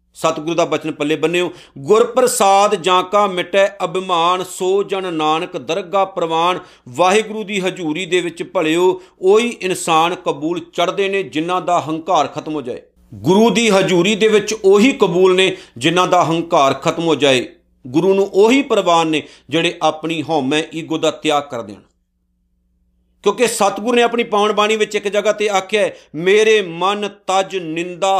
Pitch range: 155-195 Hz